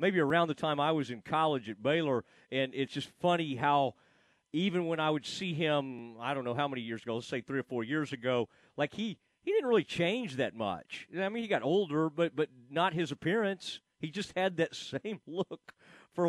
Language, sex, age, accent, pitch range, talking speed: English, male, 40-59, American, 135-180 Hz, 220 wpm